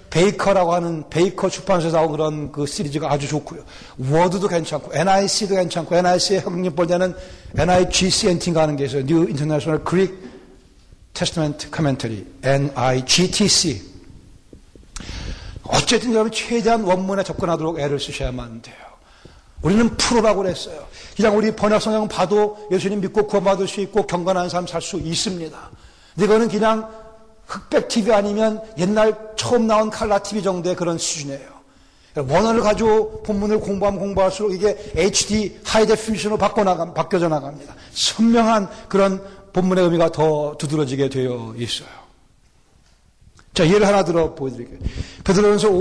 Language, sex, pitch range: Korean, male, 155-205 Hz